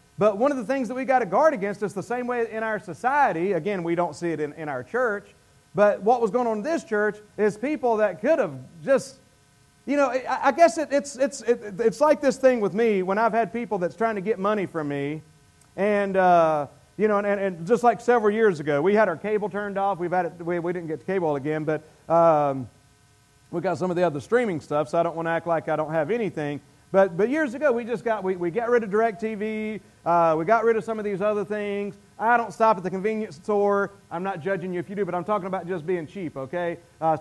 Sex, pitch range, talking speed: male, 160-220 Hz, 260 wpm